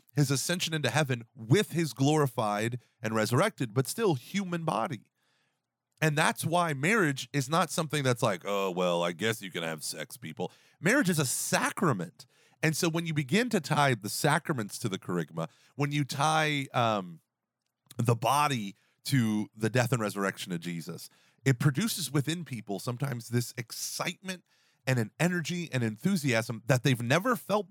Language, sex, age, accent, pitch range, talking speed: English, male, 30-49, American, 110-155 Hz, 165 wpm